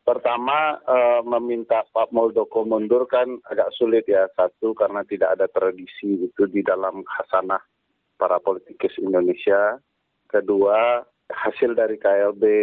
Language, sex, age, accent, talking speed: Indonesian, male, 40-59, native, 125 wpm